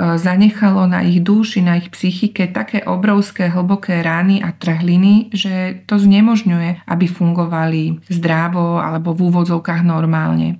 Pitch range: 170-190 Hz